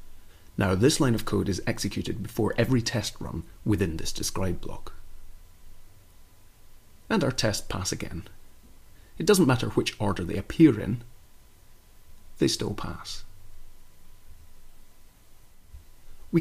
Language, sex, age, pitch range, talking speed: English, male, 30-49, 85-115 Hz, 115 wpm